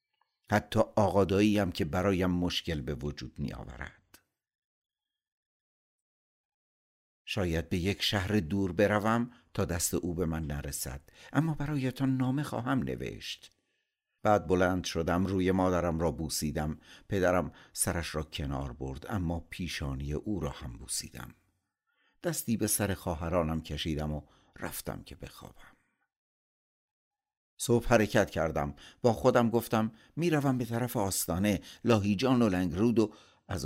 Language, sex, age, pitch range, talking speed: Persian, male, 60-79, 75-115 Hz, 125 wpm